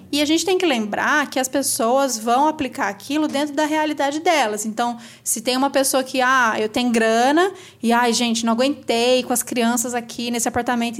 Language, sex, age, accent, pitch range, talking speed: Portuguese, female, 20-39, Brazilian, 220-285 Hz, 205 wpm